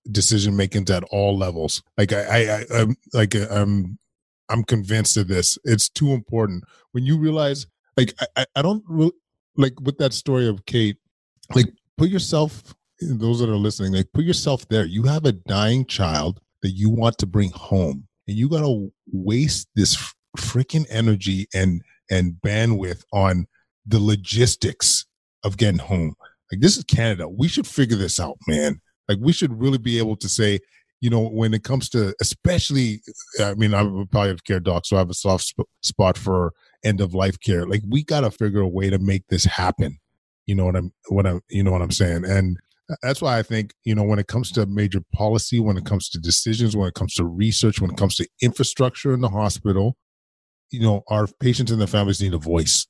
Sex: male